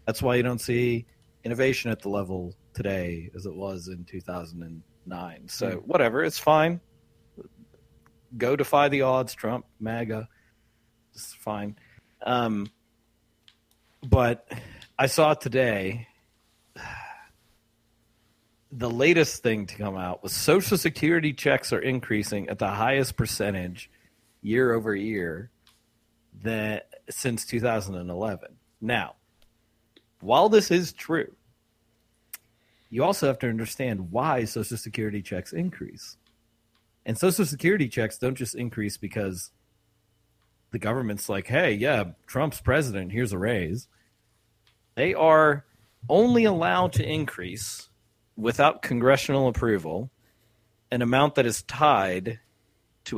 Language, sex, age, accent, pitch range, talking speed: English, male, 40-59, American, 110-125 Hz, 115 wpm